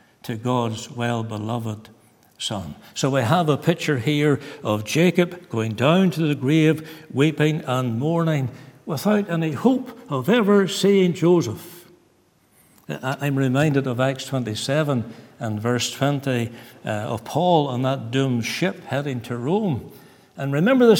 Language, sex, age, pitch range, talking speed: English, male, 60-79, 140-215 Hz, 135 wpm